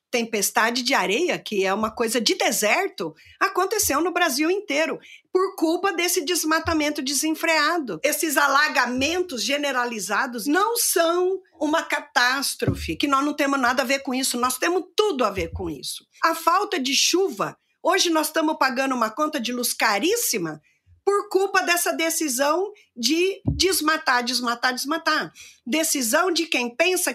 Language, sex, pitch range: Portuguese, female, 255-335 Hz